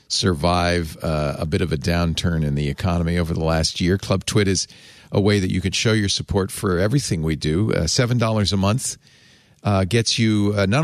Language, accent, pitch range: English, American, 90-120 Hz